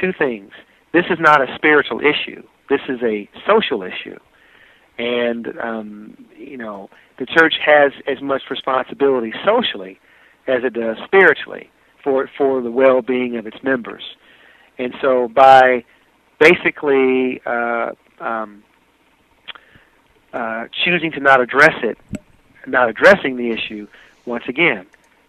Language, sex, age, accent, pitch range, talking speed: English, male, 50-69, American, 120-165 Hz, 125 wpm